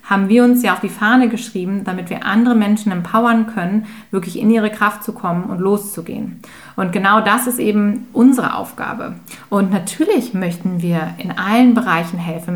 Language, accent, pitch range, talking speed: German, German, 180-220 Hz, 175 wpm